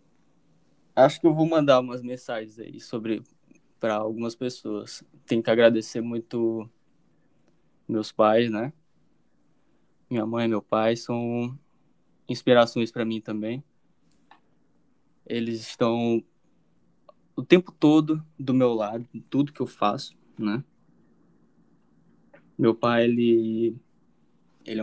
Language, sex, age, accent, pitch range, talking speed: Portuguese, male, 10-29, Brazilian, 110-125 Hz, 115 wpm